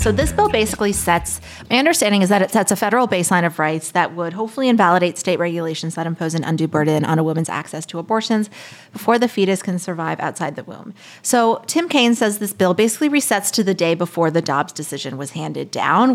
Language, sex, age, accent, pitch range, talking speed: English, female, 30-49, American, 165-220 Hz, 220 wpm